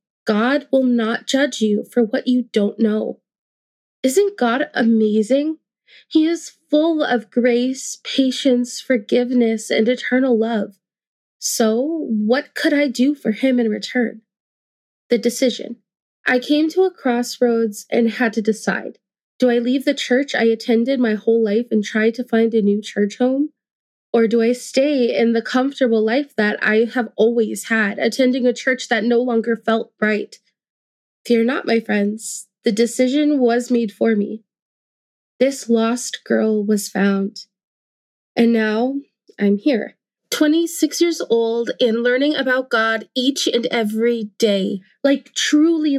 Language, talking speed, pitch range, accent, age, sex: English, 150 wpm, 220-265 Hz, American, 20-39, female